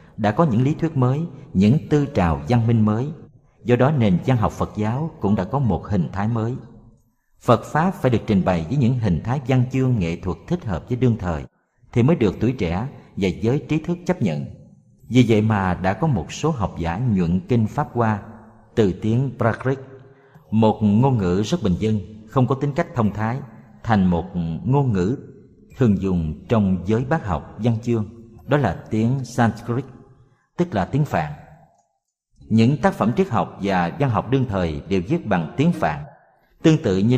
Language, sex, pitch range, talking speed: Vietnamese, male, 105-145 Hz, 195 wpm